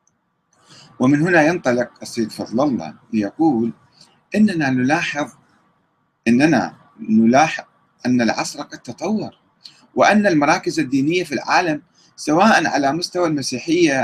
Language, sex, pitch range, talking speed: Arabic, male, 125-210 Hz, 105 wpm